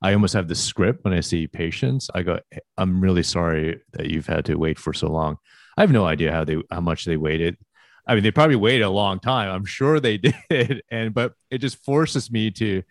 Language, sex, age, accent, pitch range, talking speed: English, male, 30-49, American, 85-115 Hz, 235 wpm